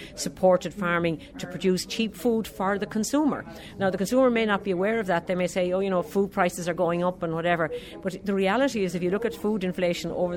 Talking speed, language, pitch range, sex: 245 wpm, English, 175-200 Hz, female